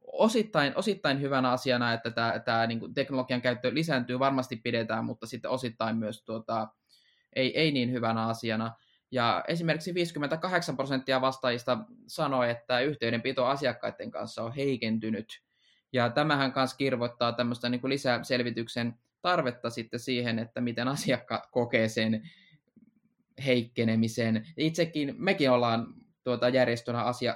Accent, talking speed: native, 125 wpm